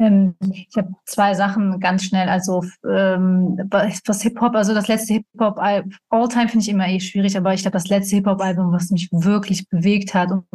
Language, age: German, 30-49